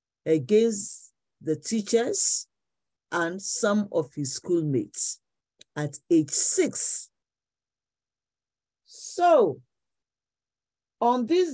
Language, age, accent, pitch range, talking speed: English, 50-69, Nigerian, 180-285 Hz, 75 wpm